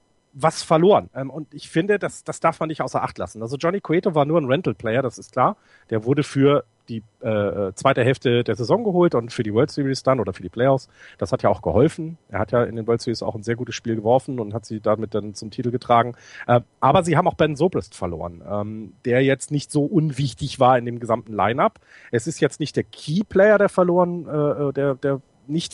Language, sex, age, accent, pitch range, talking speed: German, male, 40-59, German, 115-150 Hz, 235 wpm